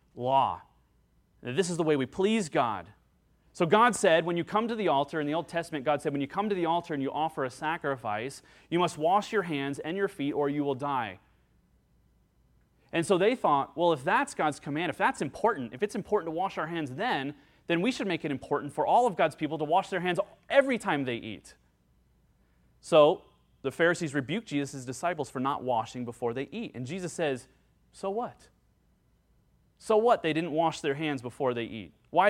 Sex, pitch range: male, 130-170 Hz